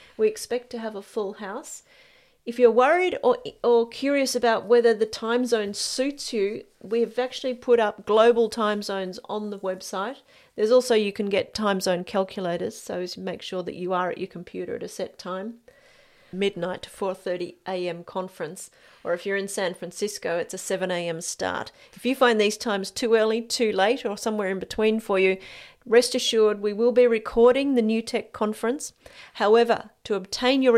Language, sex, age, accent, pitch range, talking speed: English, female, 40-59, Australian, 195-245 Hz, 190 wpm